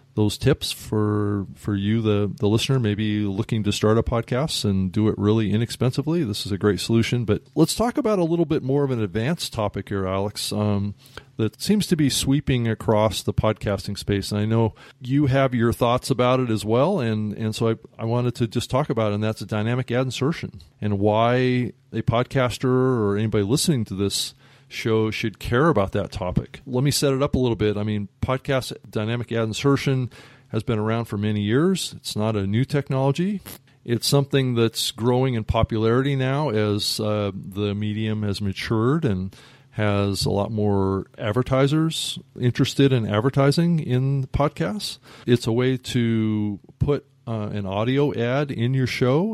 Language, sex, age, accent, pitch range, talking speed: English, male, 30-49, American, 105-135 Hz, 185 wpm